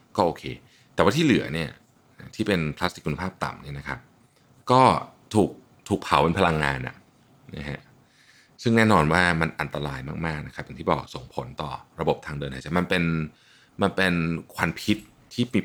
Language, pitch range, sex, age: Thai, 75-110 Hz, male, 30-49